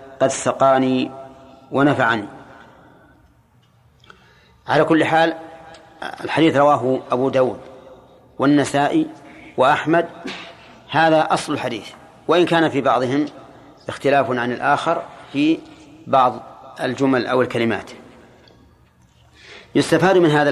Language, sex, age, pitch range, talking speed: Arabic, male, 40-59, 125-150 Hz, 90 wpm